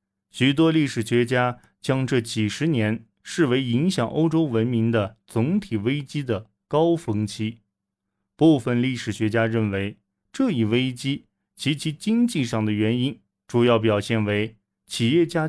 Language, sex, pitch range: Chinese, male, 110-150 Hz